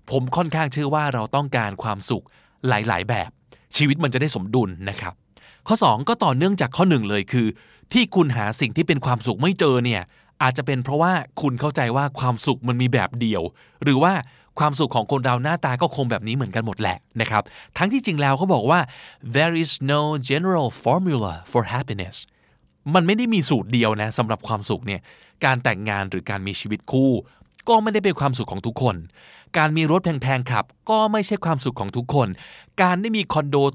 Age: 20-39